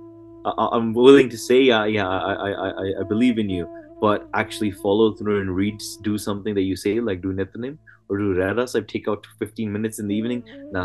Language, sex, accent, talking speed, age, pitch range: English, male, Indian, 215 wpm, 20-39, 100-140 Hz